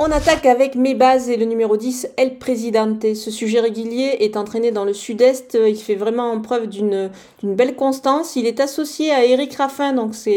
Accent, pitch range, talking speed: French, 230-270 Hz, 205 wpm